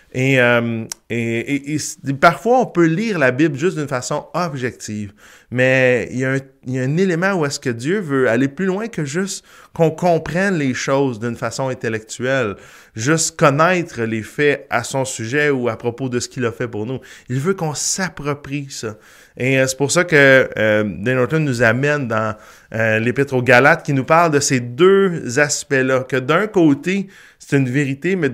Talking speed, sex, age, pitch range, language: 195 wpm, male, 20-39, 110-145 Hz, French